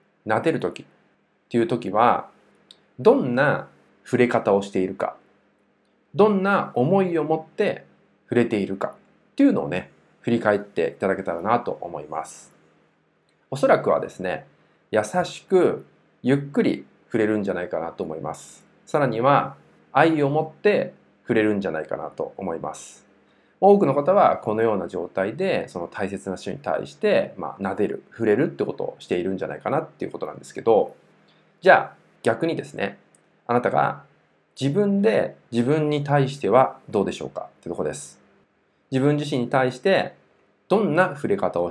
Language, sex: Japanese, male